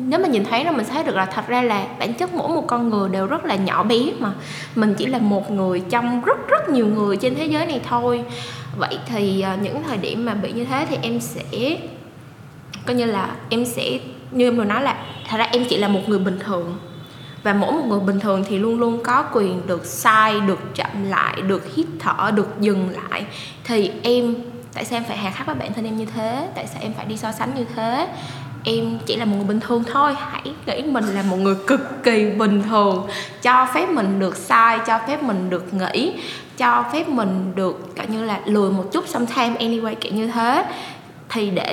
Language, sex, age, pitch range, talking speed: Vietnamese, female, 10-29, 195-255 Hz, 230 wpm